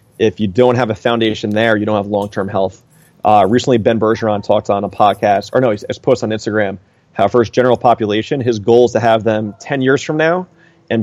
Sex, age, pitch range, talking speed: male, 30-49, 105-125 Hz, 235 wpm